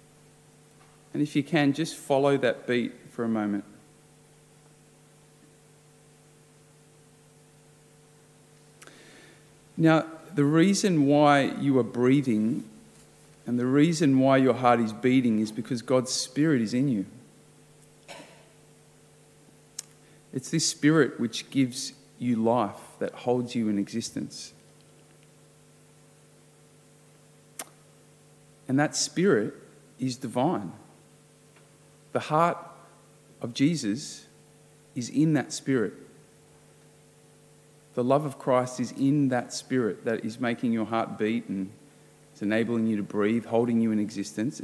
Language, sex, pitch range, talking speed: English, male, 120-150 Hz, 110 wpm